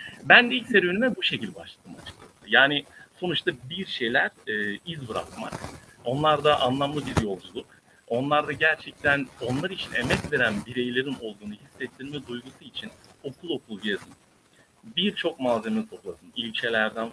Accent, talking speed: native, 135 wpm